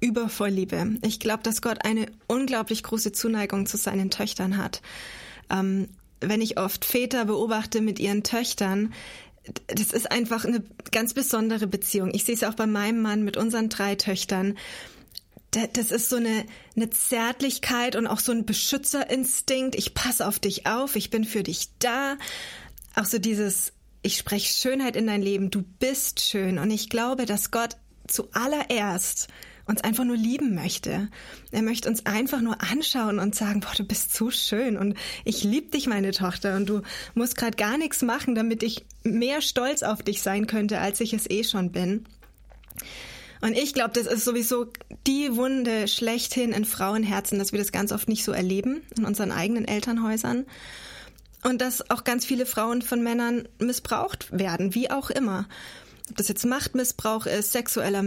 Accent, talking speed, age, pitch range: German, 175 wpm, 20-39, 205-240 Hz